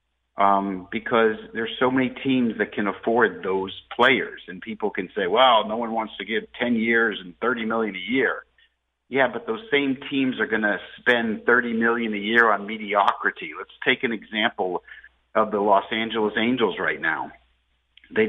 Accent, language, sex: American, English, male